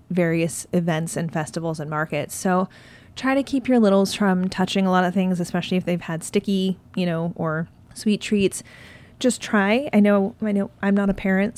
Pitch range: 170-205 Hz